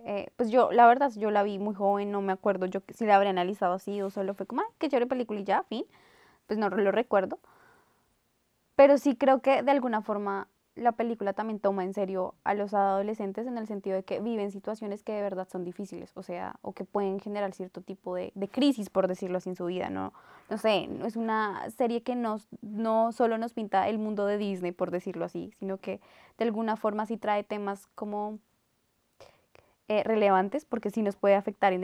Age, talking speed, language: 10-29, 215 wpm, Spanish